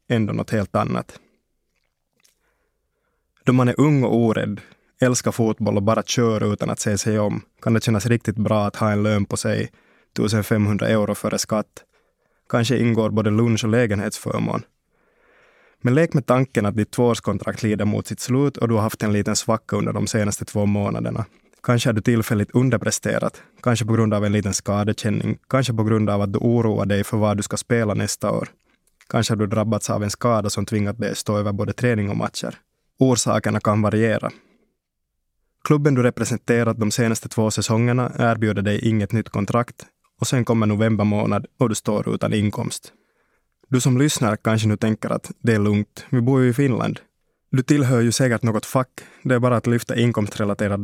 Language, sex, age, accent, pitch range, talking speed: Swedish, male, 20-39, Finnish, 105-120 Hz, 190 wpm